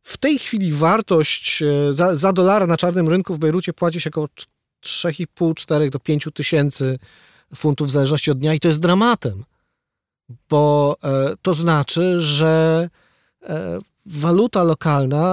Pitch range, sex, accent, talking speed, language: 145-185 Hz, male, native, 135 wpm, Polish